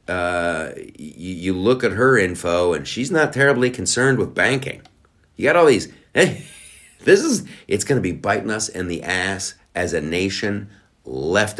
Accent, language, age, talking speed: American, English, 50-69, 170 wpm